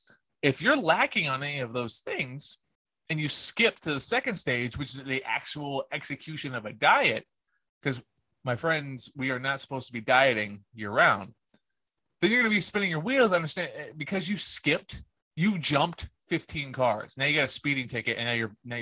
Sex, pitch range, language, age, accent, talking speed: male, 115-145 Hz, English, 30-49, American, 195 wpm